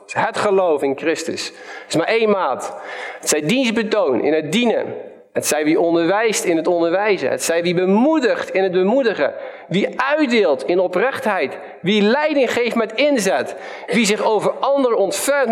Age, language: 50-69, Dutch